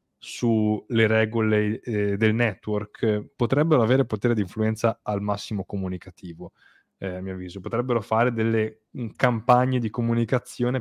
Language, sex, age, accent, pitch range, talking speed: Italian, male, 20-39, native, 95-110 Hz, 130 wpm